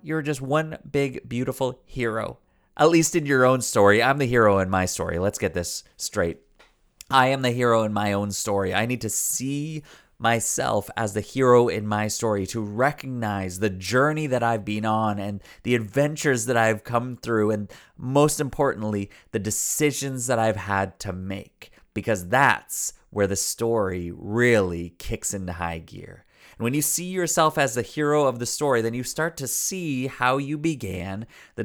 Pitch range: 105-140 Hz